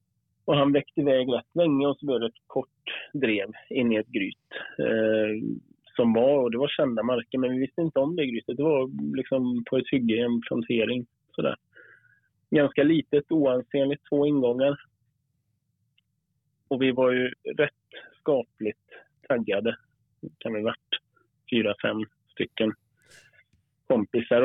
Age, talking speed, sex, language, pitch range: 30-49, 145 wpm, male, Swedish, 115-140 Hz